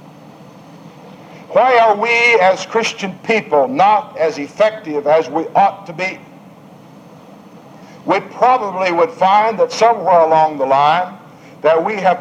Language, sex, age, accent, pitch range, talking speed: English, male, 60-79, American, 150-205 Hz, 130 wpm